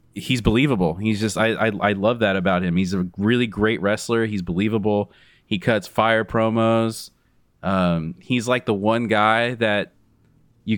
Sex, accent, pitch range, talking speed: male, American, 95-115 Hz, 165 wpm